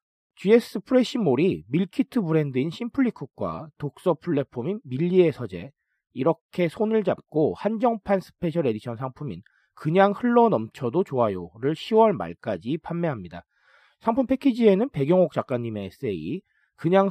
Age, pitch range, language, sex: 40-59, 140-210 Hz, Korean, male